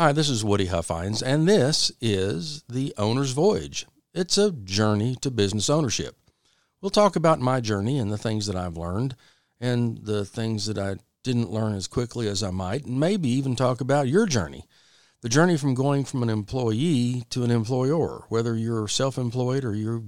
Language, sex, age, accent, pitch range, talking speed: English, male, 50-69, American, 105-140 Hz, 185 wpm